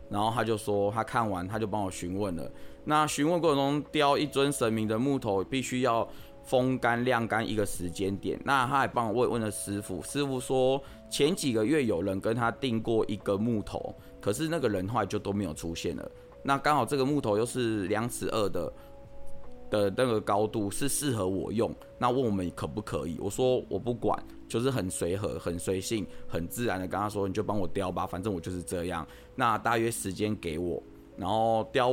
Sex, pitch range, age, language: male, 100-130 Hz, 20-39, Chinese